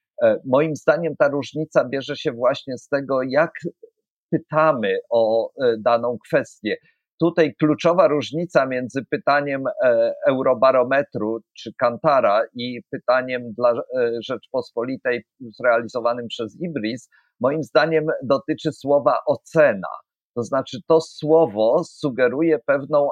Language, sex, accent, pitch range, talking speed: Polish, male, native, 130-160 Hz, 105 wpm